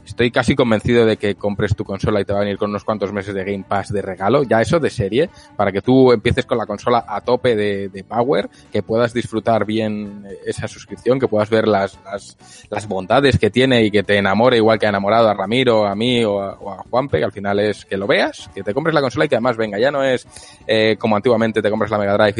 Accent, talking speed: Spanish, 260 wpm